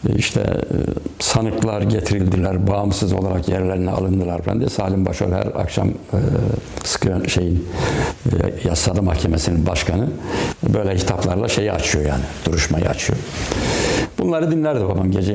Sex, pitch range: male, 95-120 Hz